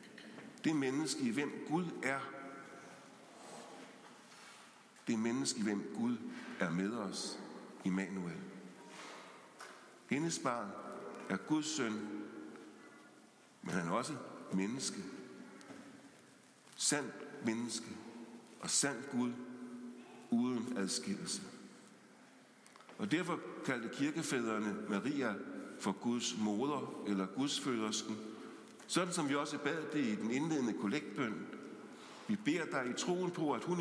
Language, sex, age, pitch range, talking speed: English, male, 60-79, 115-165 Hz, 110 wpm